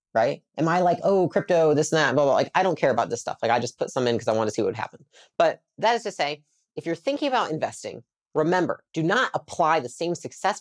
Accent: American